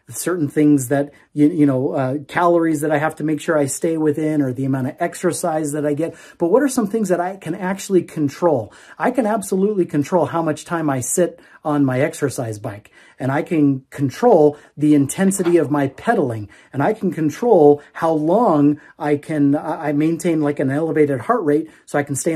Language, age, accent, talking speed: English, 30-49, American, 205 wpm